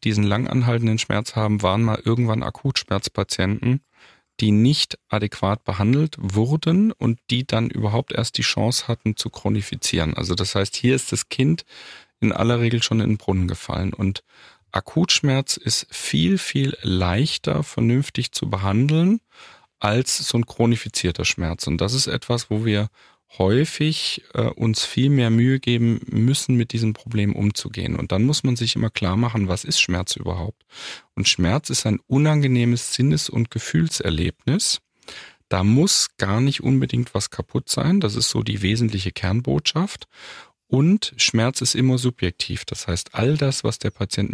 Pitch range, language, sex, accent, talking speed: 105-130 Hz, German, male, German, 160 wpm